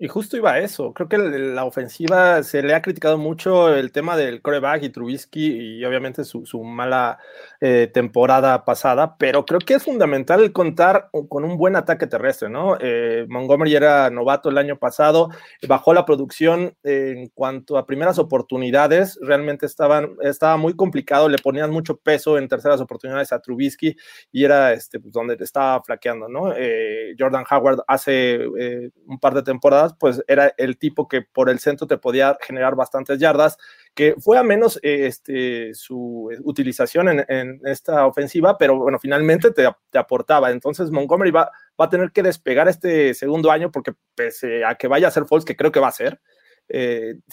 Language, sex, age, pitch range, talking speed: Spanish, male, 30-49, 135-165 Hz, 185 wpm